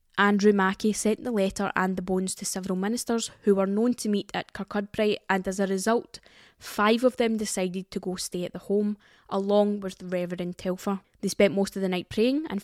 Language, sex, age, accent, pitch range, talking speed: English, female, 10-29, British, 195-220 Hz, 215 wpm